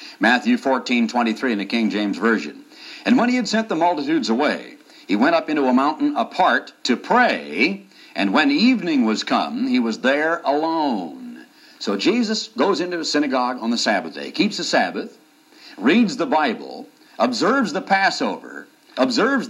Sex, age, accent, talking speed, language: male, 60-79, American, 165 wpm, English